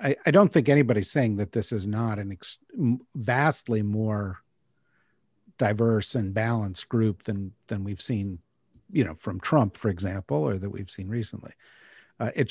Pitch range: 105-130 Hz